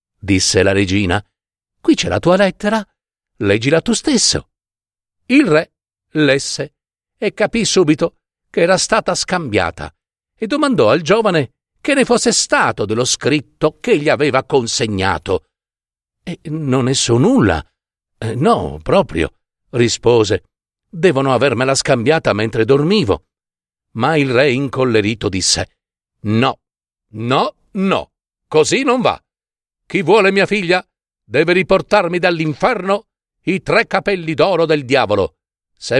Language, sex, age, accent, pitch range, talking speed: Italian, male, 50-69, native, 110-180 Hz, 120 wpm